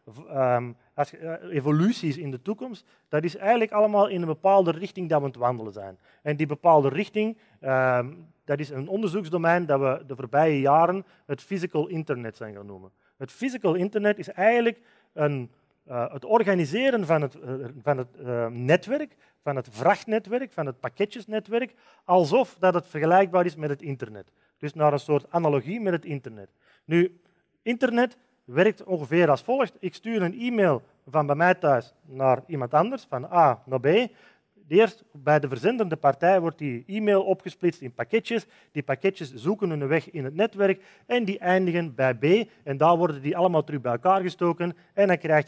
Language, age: Dutch, 30-49